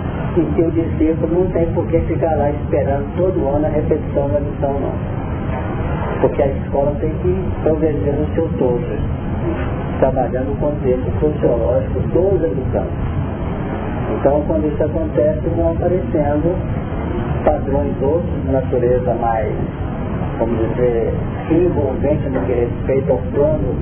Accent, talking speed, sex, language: Brazilian, 130 wpm, male, Portuguese